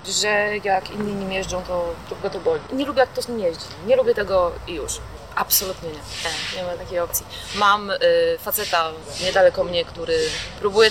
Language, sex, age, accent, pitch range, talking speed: Polish, female, 20-39, native, 185-260 Hz, 185 wpm